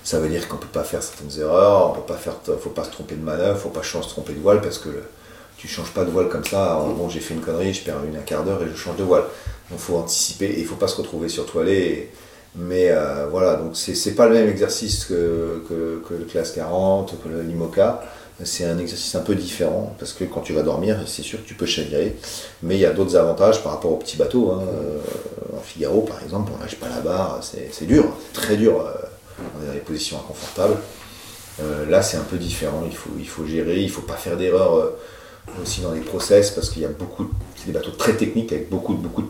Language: French